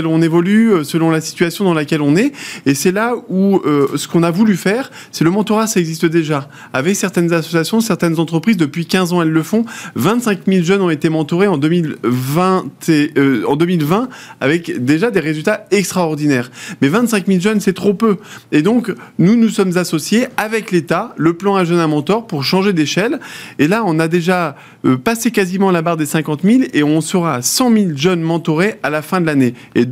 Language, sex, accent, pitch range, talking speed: French, male, French, 160-210 Hz, 215 wpm